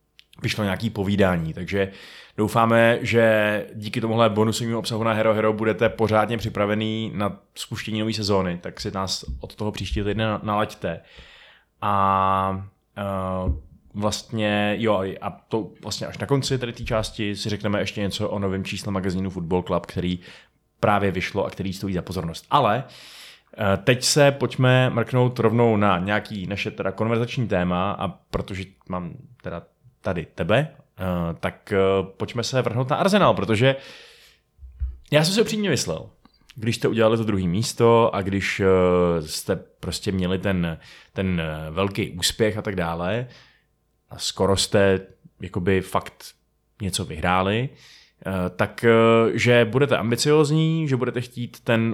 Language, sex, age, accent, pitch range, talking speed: Czech, male, 20-39, native, 95-120 Hz, 140 wpm